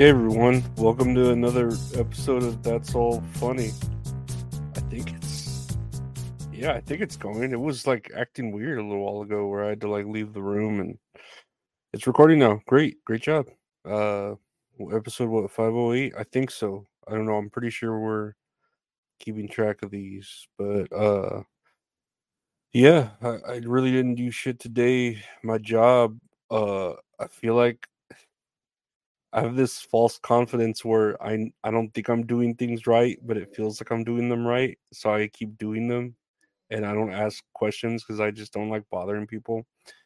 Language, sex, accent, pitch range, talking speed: English, male, American, 105-120 Hz, 170 wpm